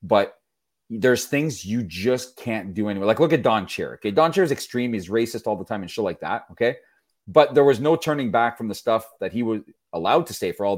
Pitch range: 95-130 Hz